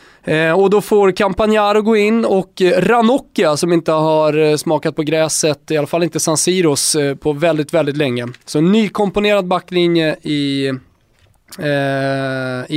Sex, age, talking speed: male, 20-39, 145 wpm